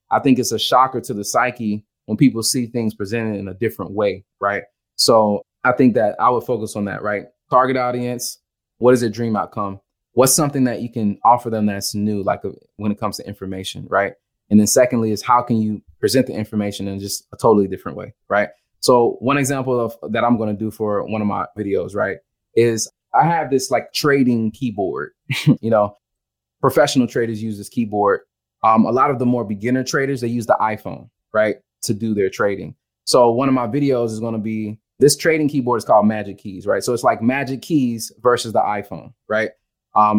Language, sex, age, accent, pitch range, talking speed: English, male, 20-39, American, 105-130 Hz, 210 wpm